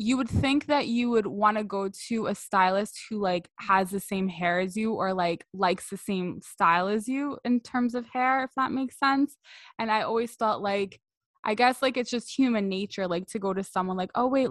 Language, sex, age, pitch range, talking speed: English, female, 20-39, 180-220 Hz, 230 wpm